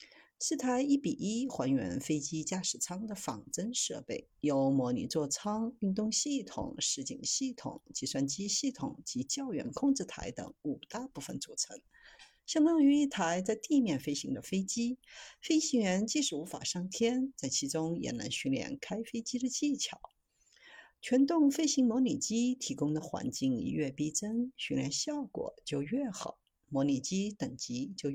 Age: 50-69